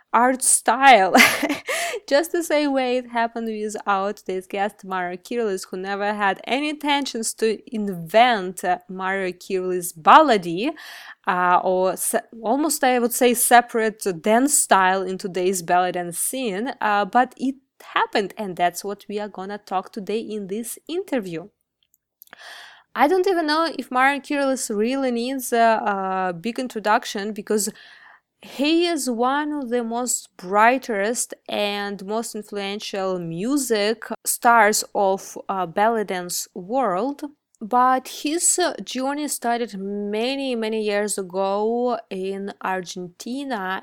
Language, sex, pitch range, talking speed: English, female, 195-255 Hz, 130 wpm